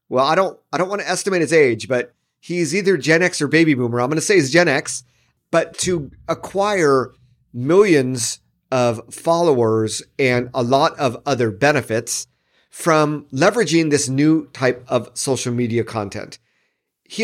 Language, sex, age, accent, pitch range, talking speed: English, male, 40-59, American, 125-165 Hz, 165 wpm